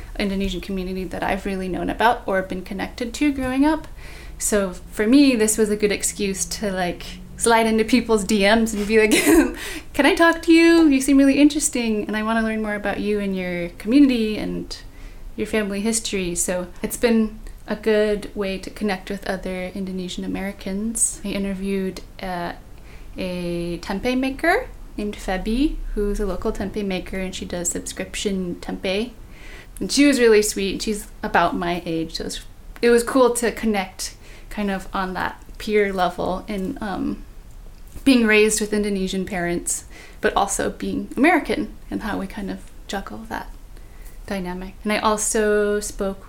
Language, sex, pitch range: English, female, 190-225 Hz